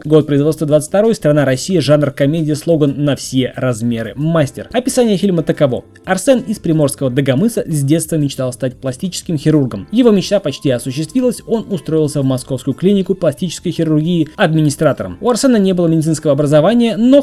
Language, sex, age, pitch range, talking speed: Russian, male, 20-39, 140-195 Hz, 155 wpm